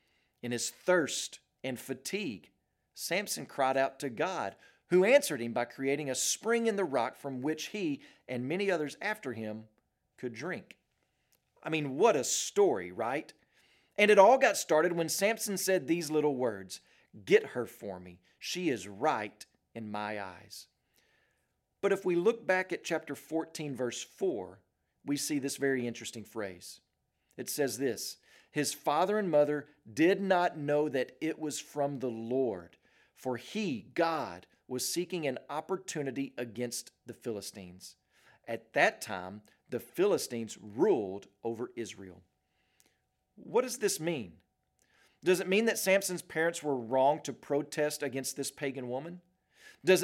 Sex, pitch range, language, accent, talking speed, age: male, 125-180 Hz, English, American, 150 wpm, 40-59